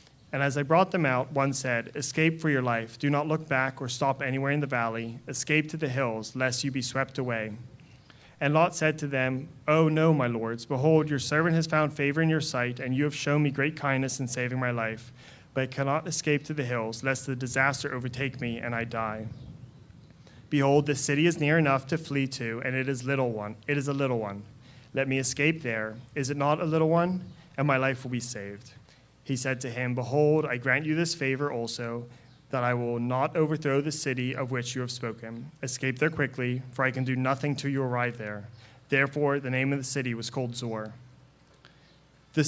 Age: 30-49